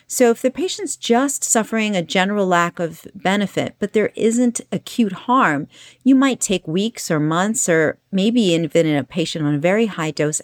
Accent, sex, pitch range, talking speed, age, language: American, female, 165-235 Hz, 185 wpm, 40-59, English